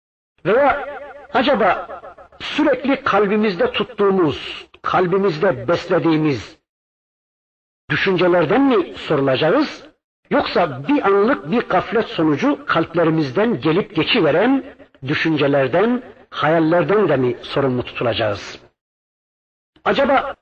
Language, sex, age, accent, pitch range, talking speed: Turkish, male, 60-79, native, 135-195 Hz, 80 wpm